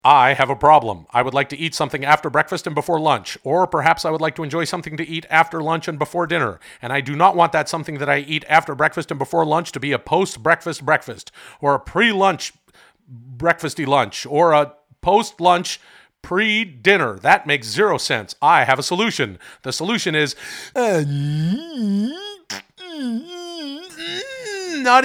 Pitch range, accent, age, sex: 135-180 Hz, American, 40-59, male